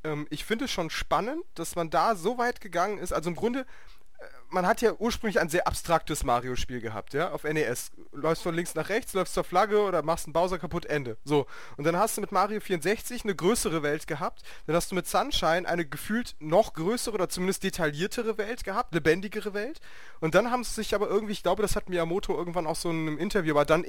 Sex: male